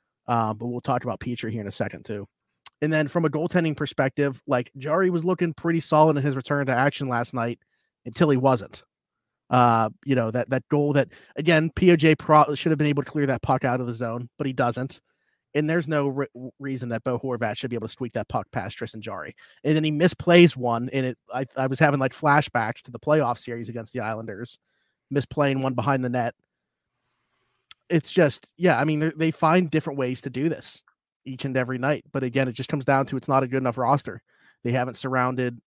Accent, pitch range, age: American, 120-145 Hz, 30-49